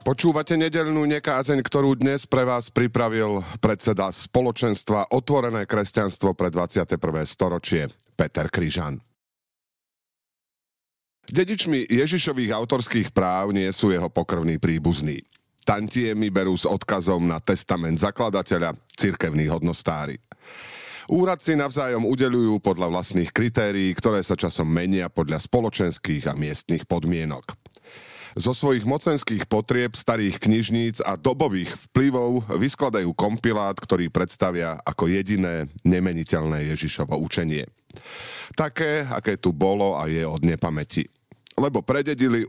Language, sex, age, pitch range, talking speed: Slovak, male, 40-59, 85-125 Hz, 110 wpm